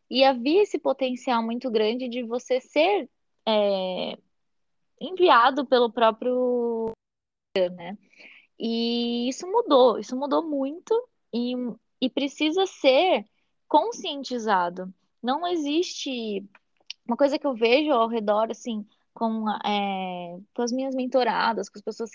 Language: Portuguese